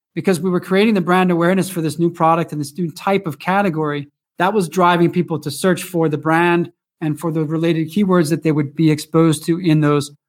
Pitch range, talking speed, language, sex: 155-180 Hz, 225 wpm, English, male